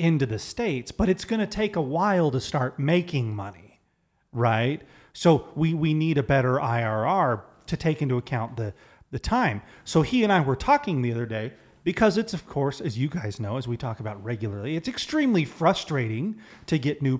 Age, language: 30-49, English